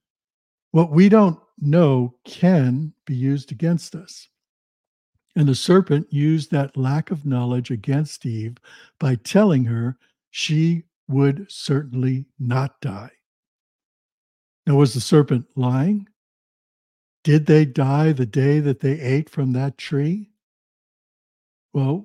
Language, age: English, 60-79